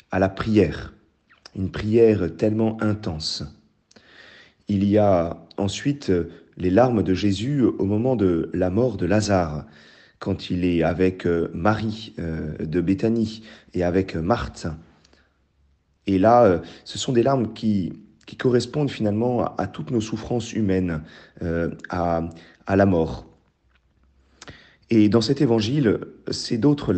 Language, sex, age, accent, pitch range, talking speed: French, male, 40-59, French, 90-115 Hz, 125 wpm